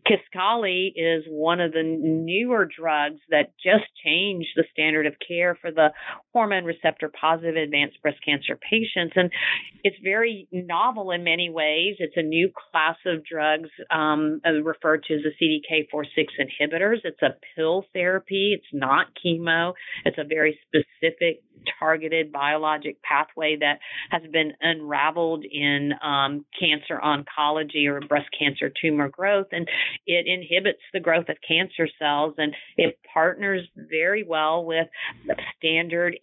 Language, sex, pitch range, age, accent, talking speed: English, female, 155-175 Hz, 40-59, American, 140 wpm